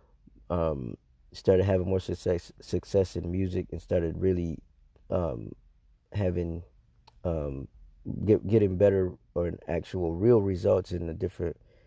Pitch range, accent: 90-105 Hz, American